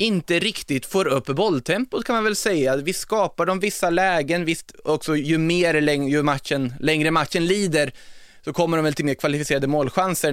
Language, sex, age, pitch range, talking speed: Swedish, male, 20-39, 135-160 Hz, 185 wpm